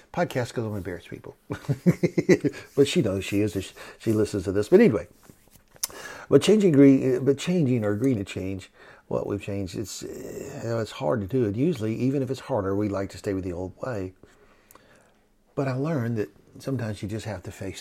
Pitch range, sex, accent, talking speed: 100-130 Hz, male, American, 195 wpm